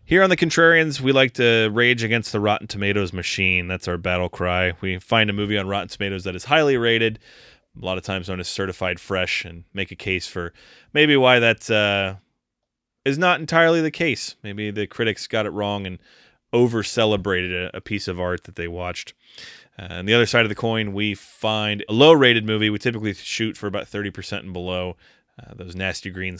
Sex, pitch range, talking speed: male, 90-115 Hz, 205 wpm